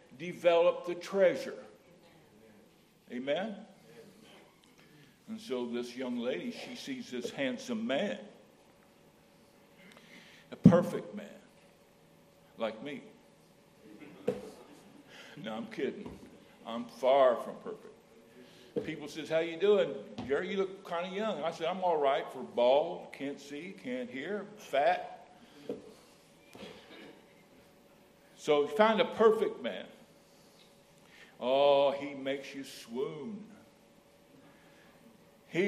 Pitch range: 140-210 Hz